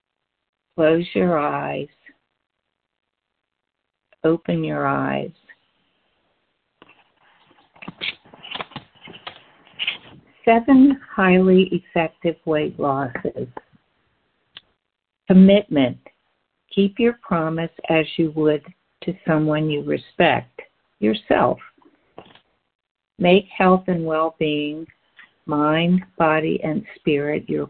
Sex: female